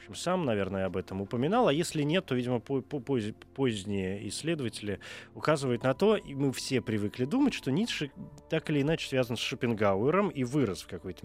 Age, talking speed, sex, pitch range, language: 20-39, 180 wpm, male, 105-140 Hz, Russian